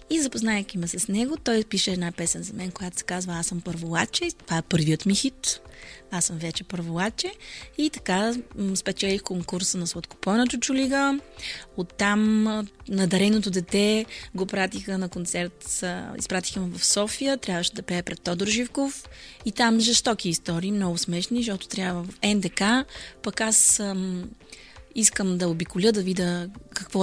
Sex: female